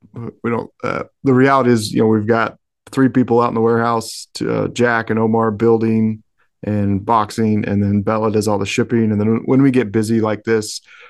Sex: male